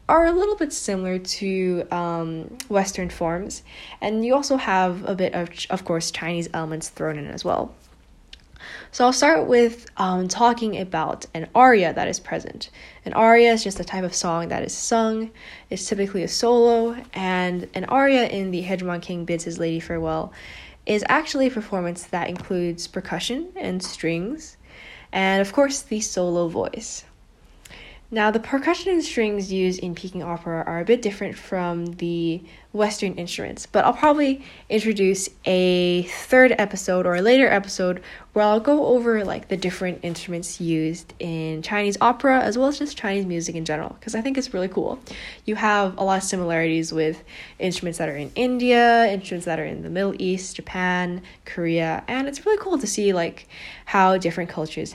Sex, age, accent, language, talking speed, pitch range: female, 10-29, American, English, 180 wpm, 170-230 Hz